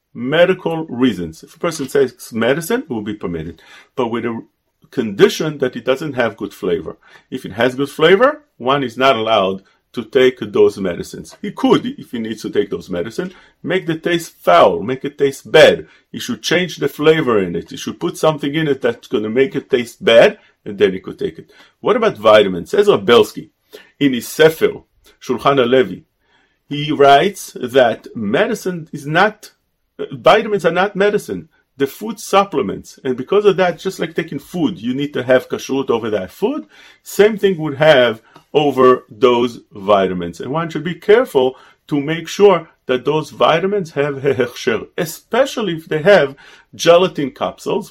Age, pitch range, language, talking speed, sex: 40-59, 130-200 Hz, English, 180 wpm, male